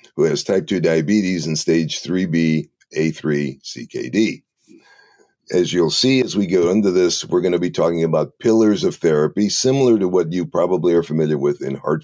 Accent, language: American, English